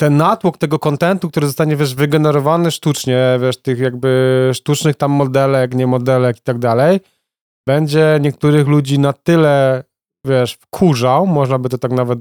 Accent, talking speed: native, 155 wpm